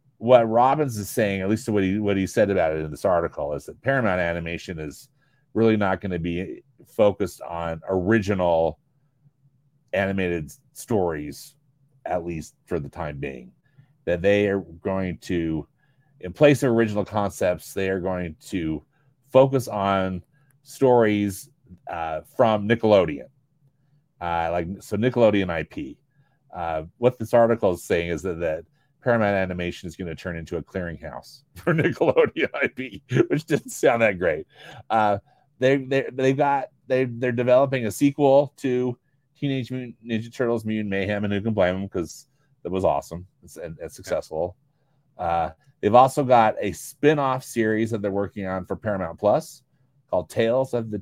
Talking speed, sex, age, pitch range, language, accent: 160 wpm, male, 30-49, 95-135 Hz, English, American